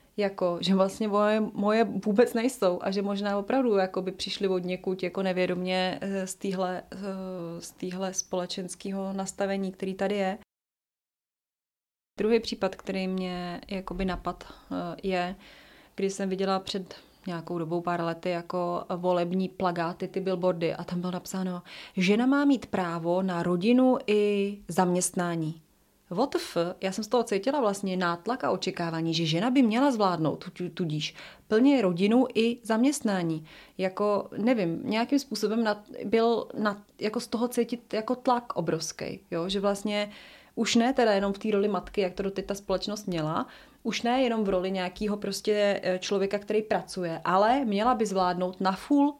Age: 30-49